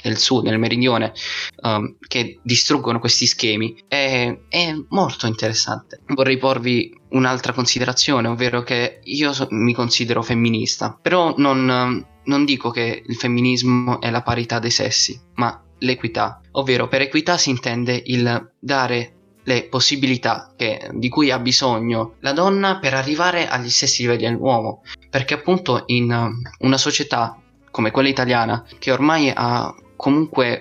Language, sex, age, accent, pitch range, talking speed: Italian, male, 20-39, native, 120-140 Hz, 135 wpm